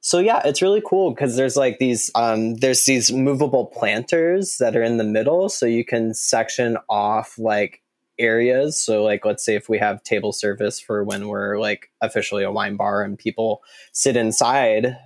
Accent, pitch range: American, 110-125 Hz